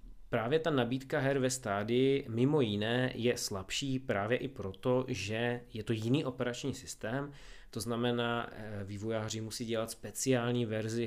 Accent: native